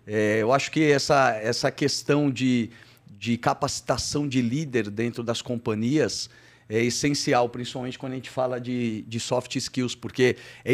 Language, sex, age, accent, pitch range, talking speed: Portuguese, male, 40-59, Brazilian, 115-140 Hz, 150 wpm